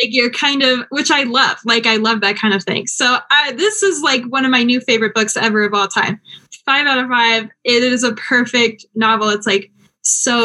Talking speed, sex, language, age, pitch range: 230 wpm, female, English, 10-29, 225-305 Hz